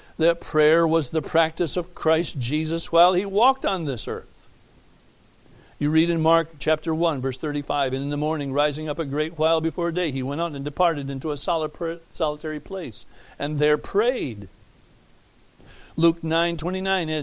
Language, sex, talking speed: English, male, 165 wpm